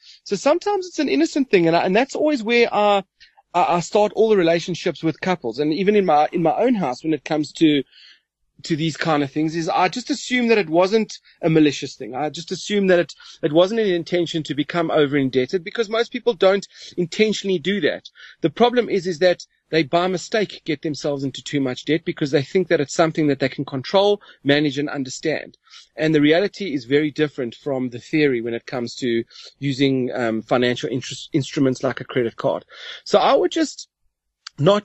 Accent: South African